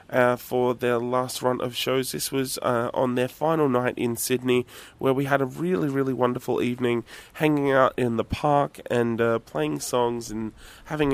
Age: 20-39